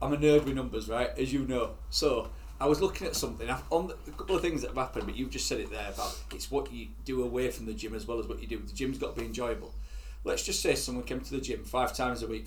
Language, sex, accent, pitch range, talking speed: English, male, British, 110-135 Hz, 300 wpm